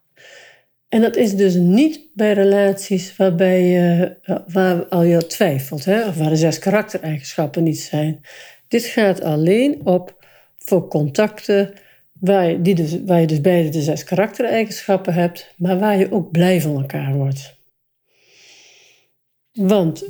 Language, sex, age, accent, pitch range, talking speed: Dutch, female, 60-79, Dutch, 165-200 Hz, 145 wpm